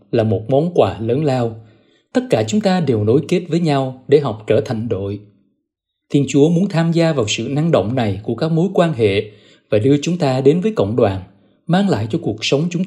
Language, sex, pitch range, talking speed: Vietnamese, male, 110-165 Hz, 230 wpm